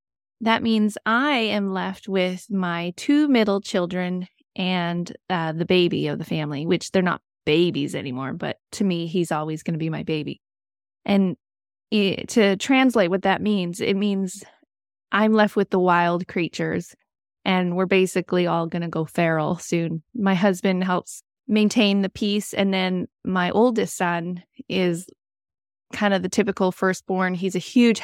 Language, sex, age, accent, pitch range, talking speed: English, female, 20-39, American, 175-205 Hz, 160 wpm